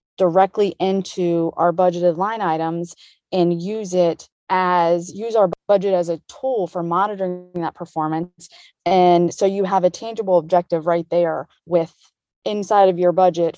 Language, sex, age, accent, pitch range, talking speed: English, female, 20-39, American, 175-195 Hz, 150 wpm